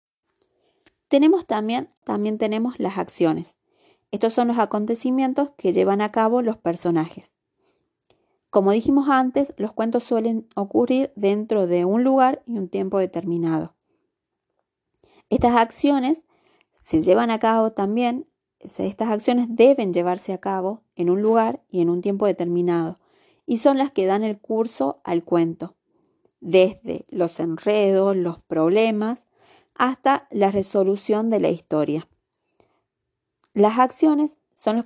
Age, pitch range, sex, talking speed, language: 30-49, 185-265 Hz, female, 130 wpm, Spanish